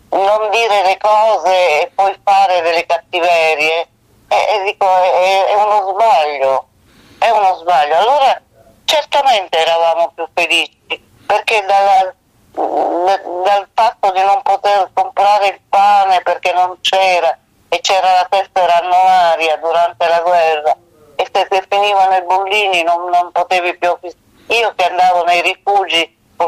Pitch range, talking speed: 170-210 Hz, 140 wpm